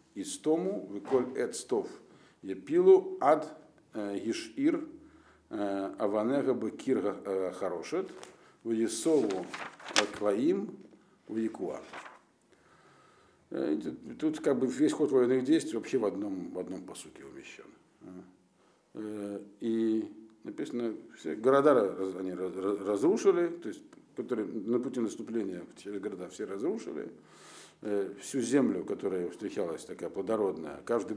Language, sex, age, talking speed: Russian, male, 50-69, 100 wpm